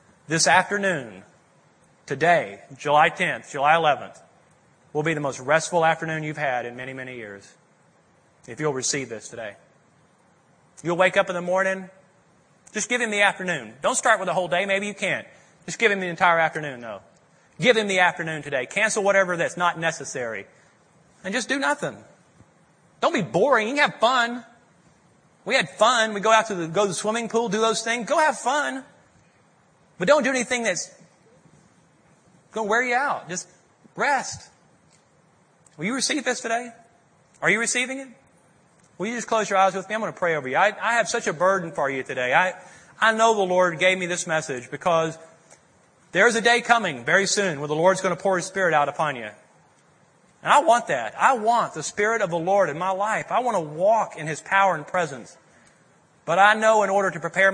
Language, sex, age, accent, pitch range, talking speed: English, male, 30-49, American, 165-215 Hz, 200 wpm